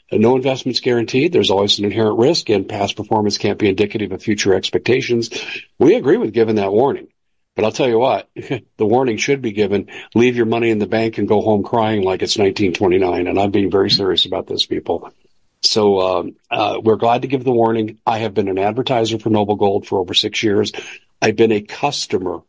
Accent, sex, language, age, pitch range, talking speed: American, male, English, 50-69, 105-120 Hz, 215 wpm